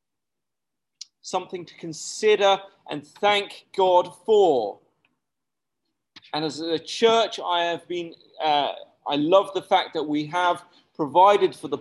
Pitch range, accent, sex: 155-210 Hz, British, male